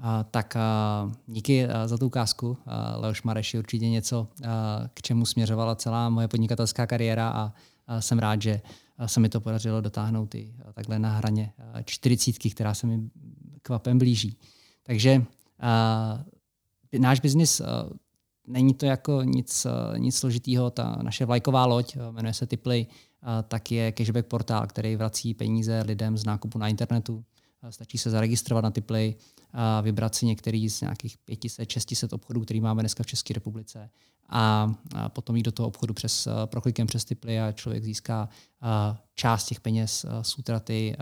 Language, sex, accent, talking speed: Czech, male, native, 165 wpm